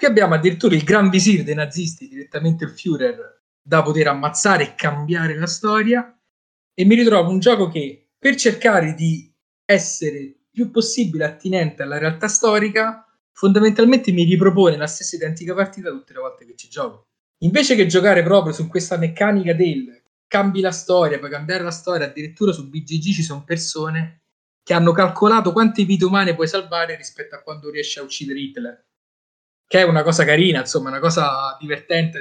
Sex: male